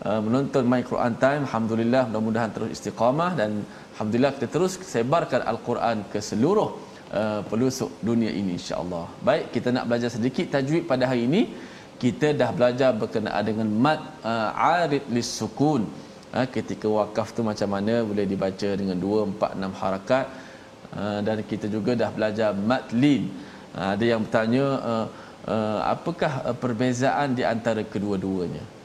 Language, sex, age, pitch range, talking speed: Malayalam, male, 20-39, 110-130 Hz, 155 wpm